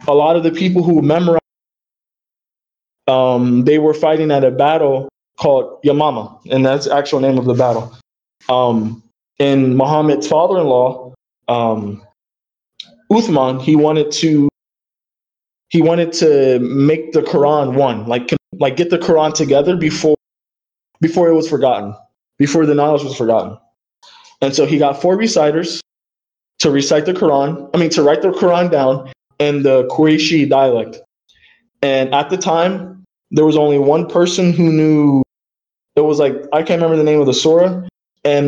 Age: 20-39